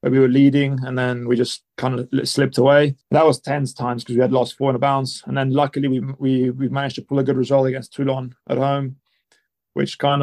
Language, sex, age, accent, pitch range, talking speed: English, male, 30-49, British, 130-140 Hz, 245 wpm